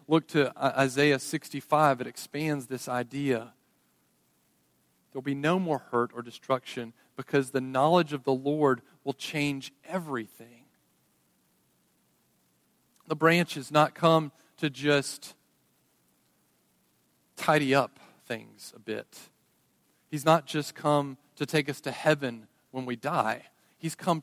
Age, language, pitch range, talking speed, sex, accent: 40-59, English, 125-160 Hz, 125 wpm, male, American